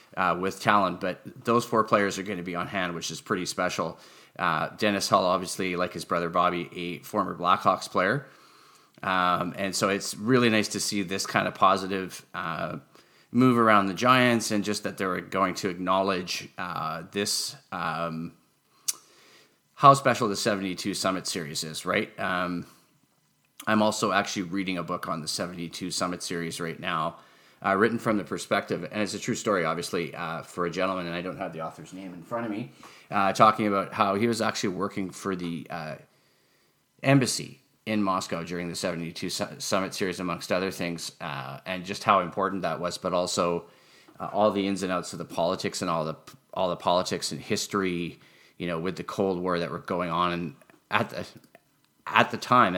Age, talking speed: 30-49, 190 wpm